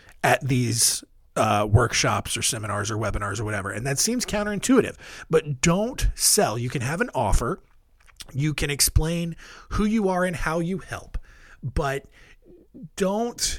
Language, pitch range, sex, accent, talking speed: English, 120-175 Hz, male, American, 150 wpm